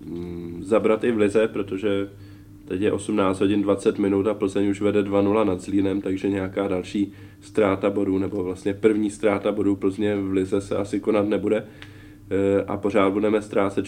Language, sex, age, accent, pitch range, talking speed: Czech, male, 20-39, native, 100-110 Hz, 175 wpm